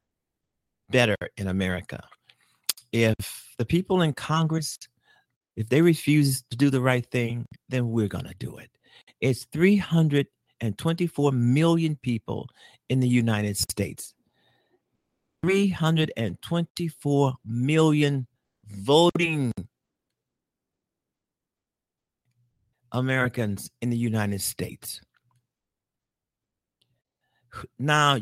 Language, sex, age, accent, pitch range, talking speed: English, male, 50-69, American, 110-150 Hz, 85 wpm